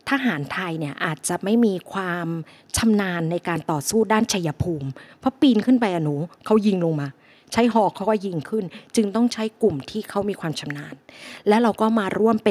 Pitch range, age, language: 170-225 Hz, 20-39, Thai